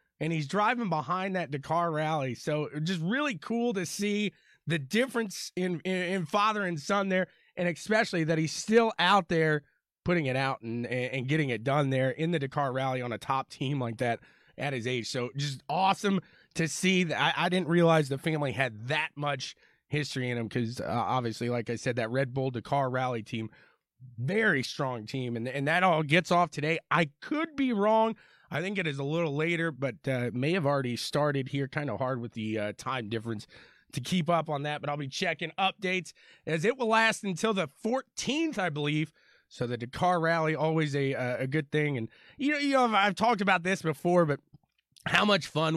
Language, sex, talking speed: English, male, 210 wpm